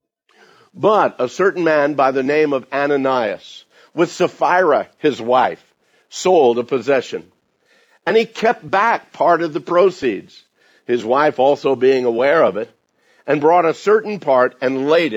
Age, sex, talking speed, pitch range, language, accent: 50-69, male, 150 wpm, 130-170 Hz, English, American